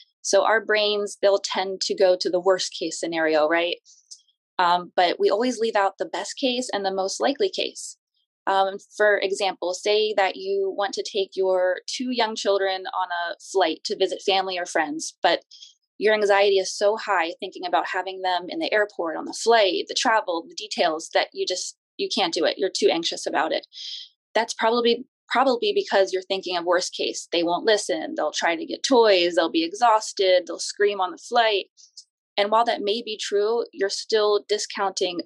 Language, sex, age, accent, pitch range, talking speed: English, female, 20-39, American, 190-245 Hz, 195 wpm